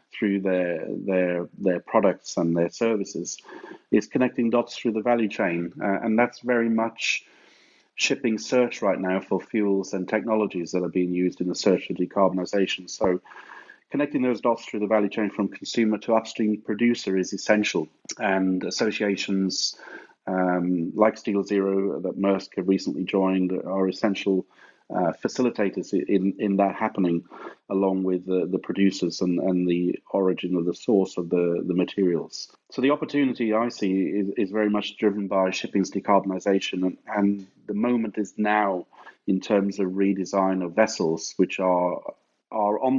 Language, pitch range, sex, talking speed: English, 90-105 Hz, male, 160 wpm